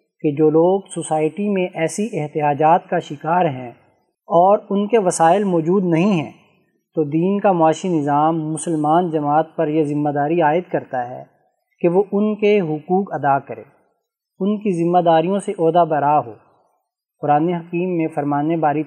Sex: male